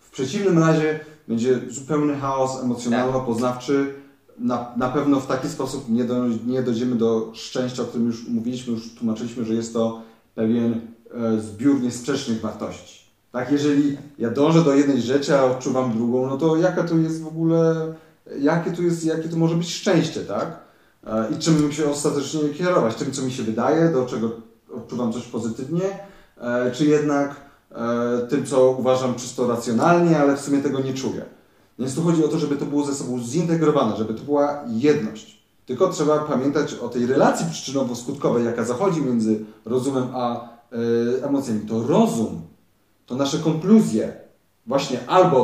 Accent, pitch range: native, 120-150 Hz